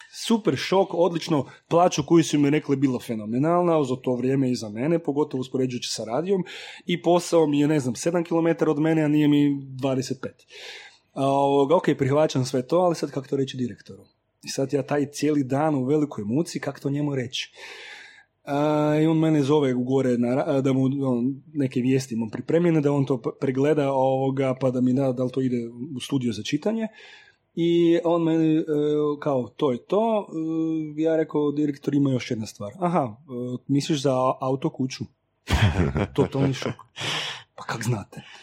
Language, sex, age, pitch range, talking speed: Croatian, male, 30-49, 130-165 Hz, 180 wpm